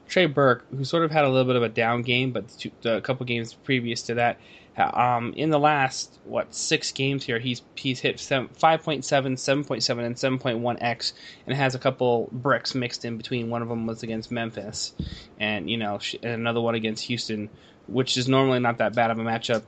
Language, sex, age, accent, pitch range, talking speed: English, male, 20-39, American, 115-130 Hz, 200 wpm